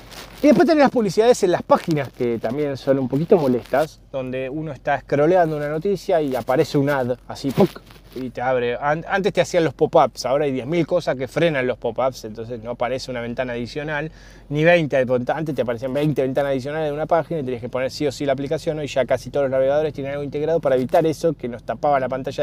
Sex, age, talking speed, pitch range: male, 20-39, 230 wpm, 130-165 Hz